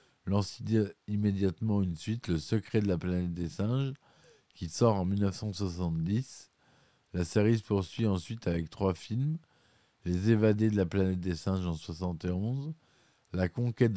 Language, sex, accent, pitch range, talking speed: French, male, French, 90-110 Hz, 145 wpm